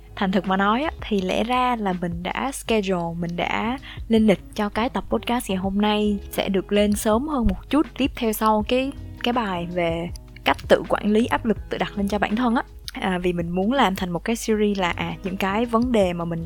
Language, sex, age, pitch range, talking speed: Vietnamese, female, 20-39, 185-225 Hz, 235 wpm